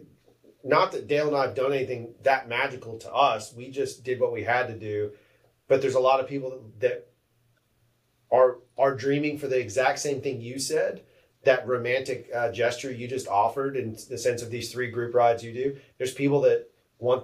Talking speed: 200 wpm